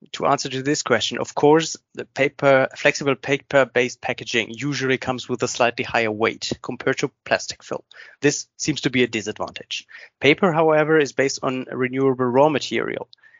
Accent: German